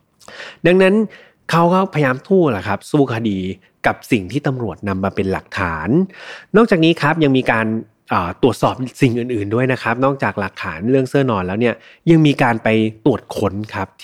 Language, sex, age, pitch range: Thai, male, 20-39, 105-140 Hz